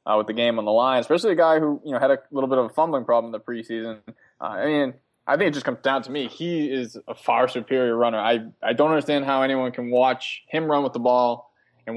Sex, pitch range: male, 115-135 Hz